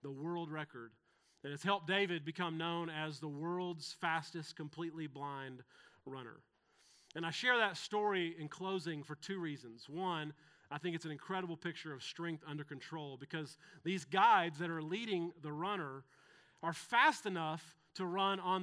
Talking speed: 165 wpm